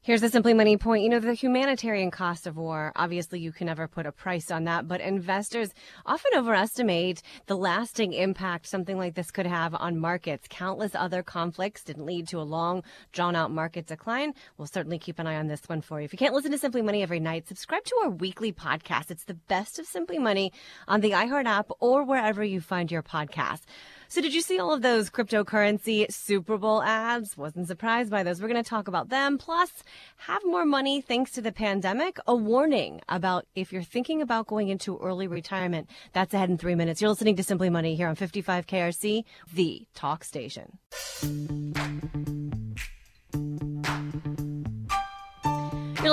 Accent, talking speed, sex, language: American, 185 wpm, female, English